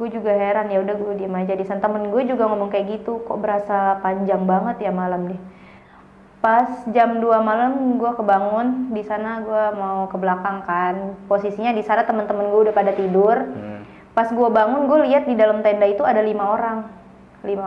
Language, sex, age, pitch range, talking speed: Indonesian, female, 20-39, 195-230 Hz, 185 wpm